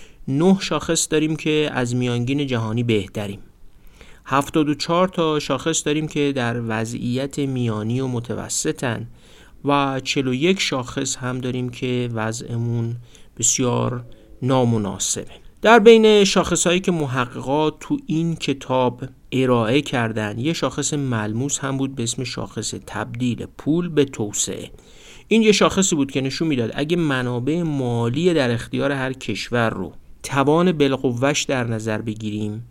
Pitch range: 120-155 Hz